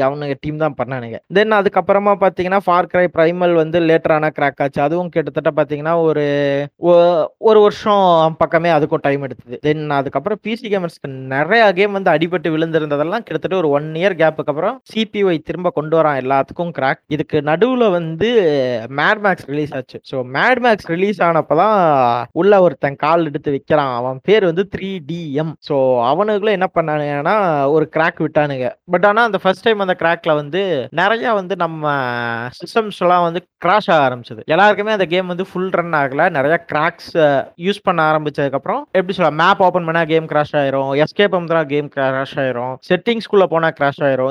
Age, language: 20-39, Tamil